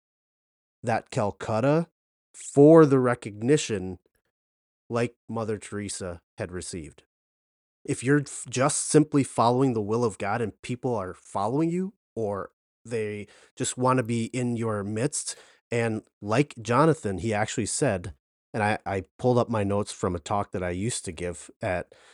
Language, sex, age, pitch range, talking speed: English, male, 30-49, 100-130 Hz, 150 wpm